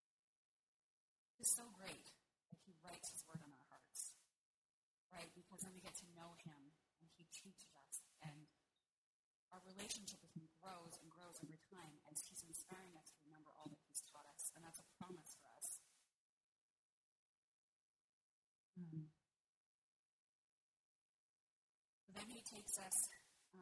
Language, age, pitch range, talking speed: English, 30-49, 165-195 Hz, 145 wpm